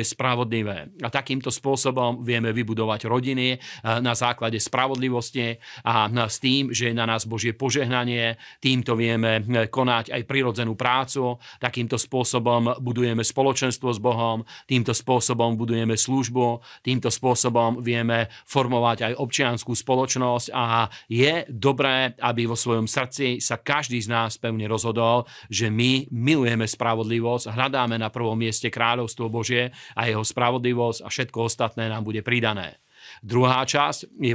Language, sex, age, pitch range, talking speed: Slovak, male, 40-59, 115-130 Hz, 135 wpm